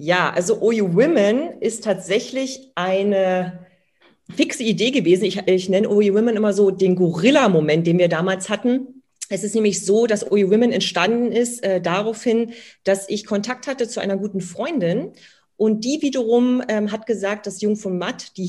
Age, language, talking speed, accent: 40-59, German, 170 wpm, German